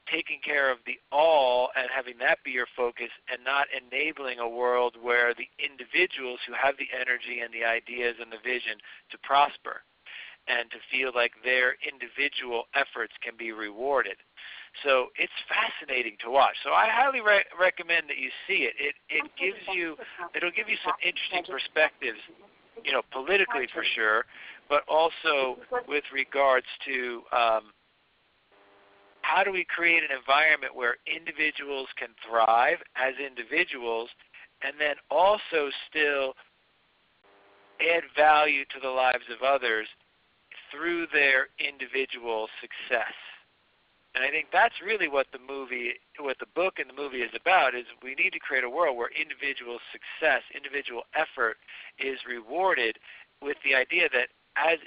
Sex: male